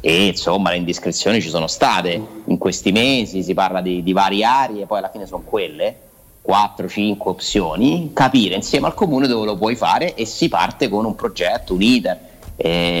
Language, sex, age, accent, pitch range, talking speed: Italian, male, 30-49, native, 100-130 Hz, 185 wpm